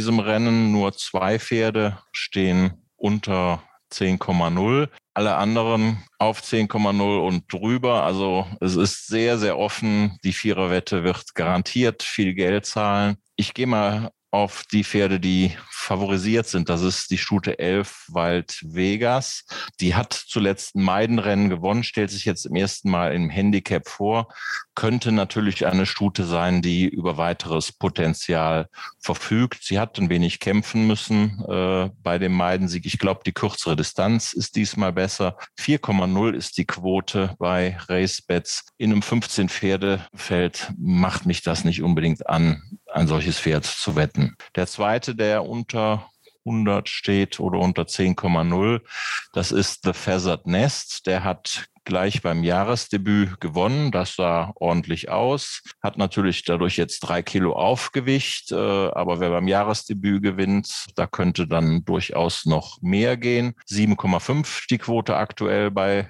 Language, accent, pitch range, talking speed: German, German, 90-110 Hz, 140 wpm